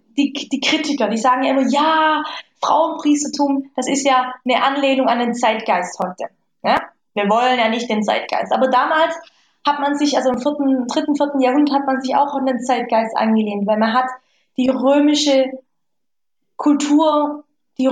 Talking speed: 155 wpm